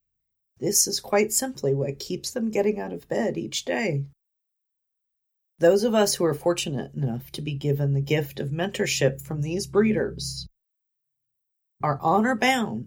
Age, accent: 40-59, American